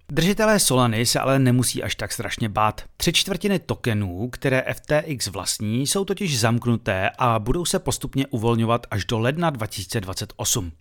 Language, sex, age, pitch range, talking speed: Czech, male, 30-49, 110-165 Hz, 150 wpm